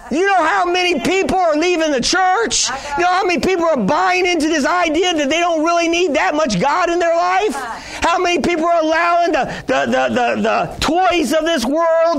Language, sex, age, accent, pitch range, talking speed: English, male, 40-59, American, 215-330 Hz, 215 wpm